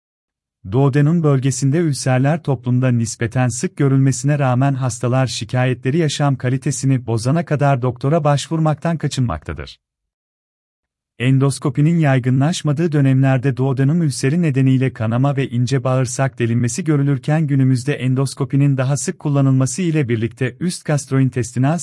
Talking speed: 105 wpm